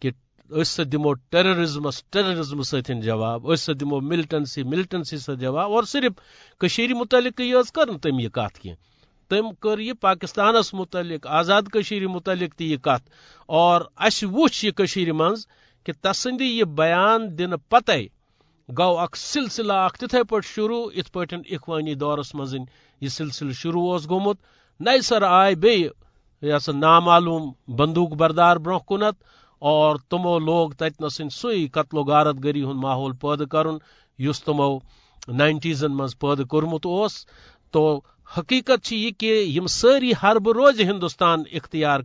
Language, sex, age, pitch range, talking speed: Urdu, male, 50-69, 150-210 Hz, 150 wpm